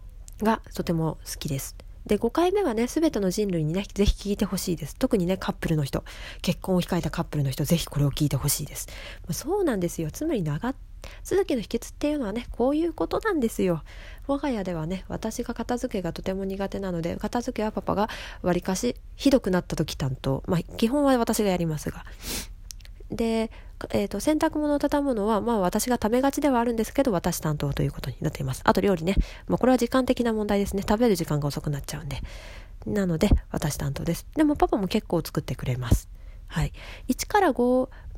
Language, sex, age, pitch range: Japanese, female, 20-39, 160-230 Hz